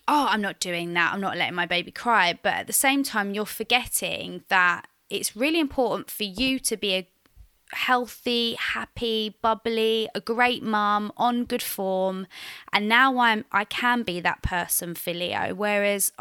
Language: English